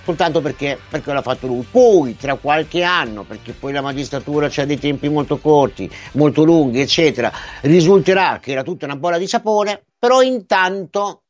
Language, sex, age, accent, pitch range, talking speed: Italian, male, 50-69, native, 130-175 Hz, 175 wpm